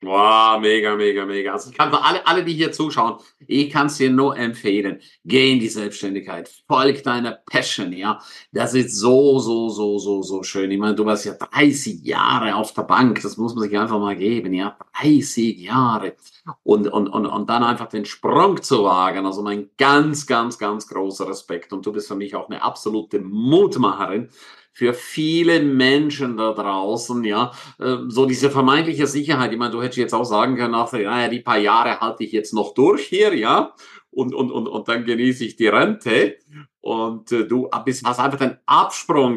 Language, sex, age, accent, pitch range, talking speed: German, male, 50-69, German, 105-135 Hz, 195 wpm